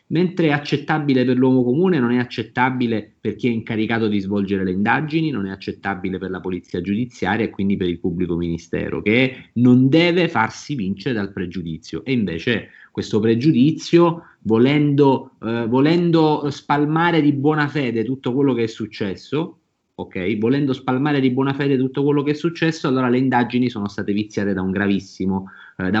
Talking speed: 140 wpm